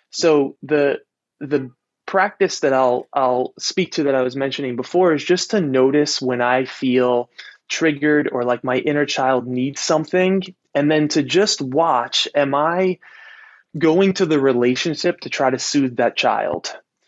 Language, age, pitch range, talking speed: English, 20-39, 130-185 Hz, 160 wpm